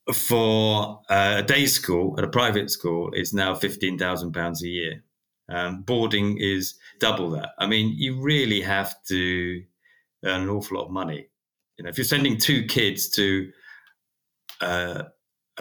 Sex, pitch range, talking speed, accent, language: male, 90-110 Hz, 165 wpm, British, English